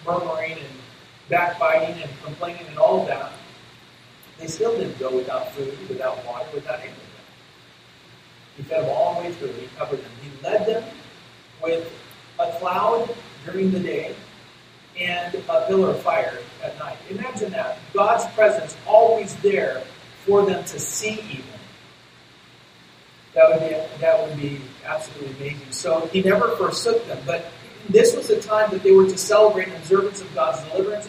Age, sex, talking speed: 40-59, male, 155 wpm